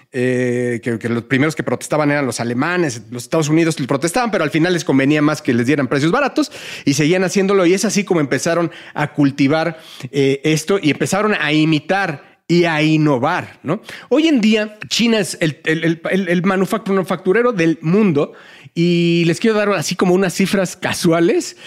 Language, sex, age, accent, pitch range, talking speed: Spanish, male, 40-59, Mexican, 150-195 Hz, 185 wpm